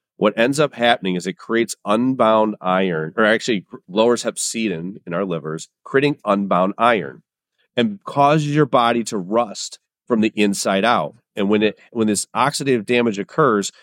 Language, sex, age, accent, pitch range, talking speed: English, male, 40-59, American, 110-145 Hz, 160 wpm